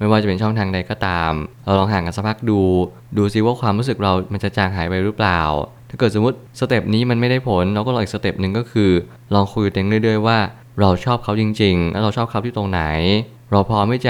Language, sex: Thai, male